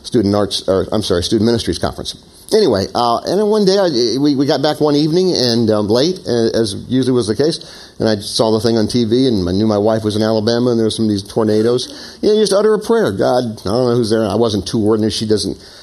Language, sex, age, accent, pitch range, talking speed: English, male, 50-69, American, 110-165 Hz, 265 wpm